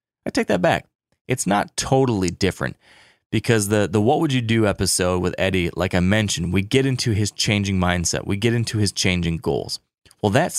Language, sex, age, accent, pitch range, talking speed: English, male, 30-49, American, 95-115 Hz, 200 wpm